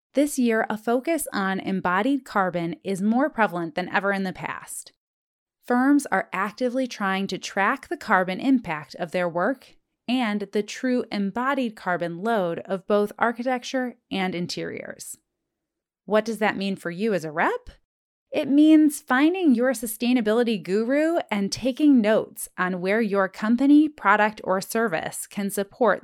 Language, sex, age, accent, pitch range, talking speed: English, female, 30-49, American, 185-260 Hz, 150 wpm